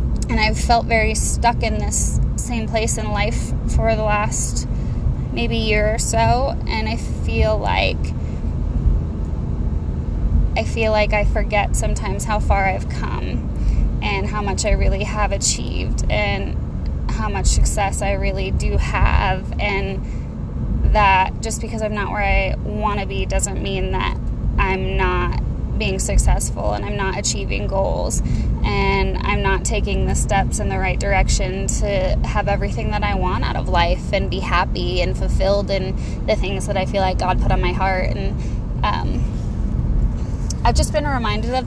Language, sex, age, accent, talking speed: English, female, 20-39, American, 165 wpm